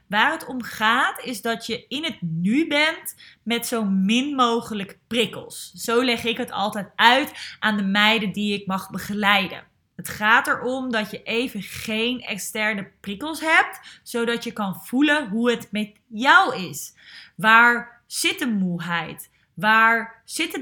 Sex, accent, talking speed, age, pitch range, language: female, Dutch, 155 wpm, 20-39, 205-260 Hz, Dutch